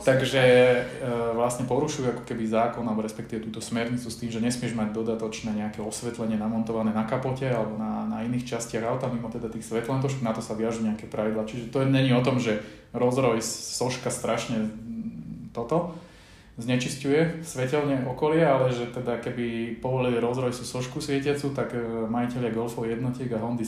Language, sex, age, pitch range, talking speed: Slovak, male, 20-39, 115-130 Hz, 170 wpm